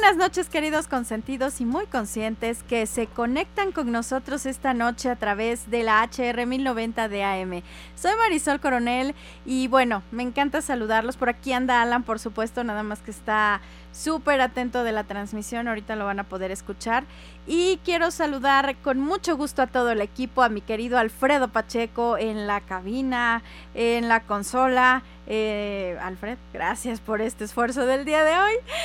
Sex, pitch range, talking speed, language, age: female, 210-260 Hz, 170 wpm, Spanish, 20-39